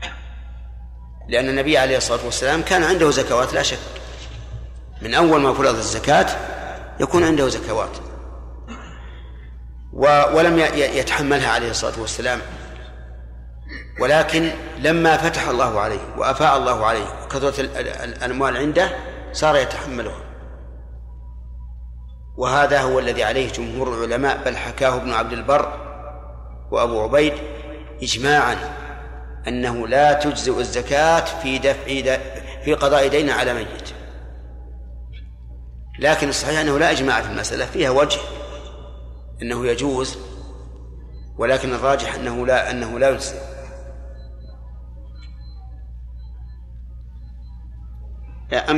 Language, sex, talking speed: Arabic, male, 100 wpm